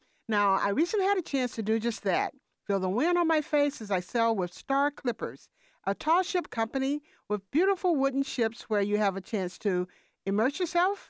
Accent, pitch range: American, 205-310 Hz